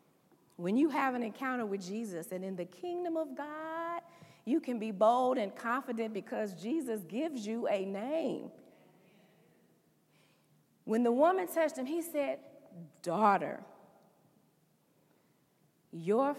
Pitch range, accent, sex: 215-310 Hz, American, female